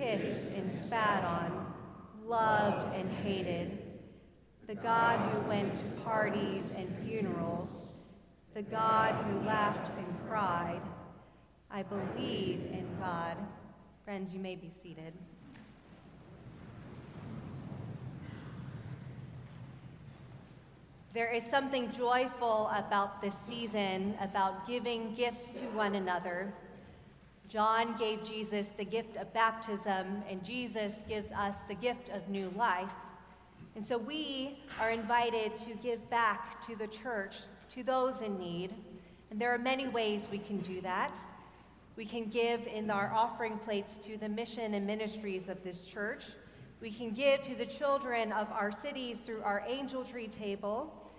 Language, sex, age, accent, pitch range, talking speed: English, female, 30-49, American, 190-230 Hz, 130 wpm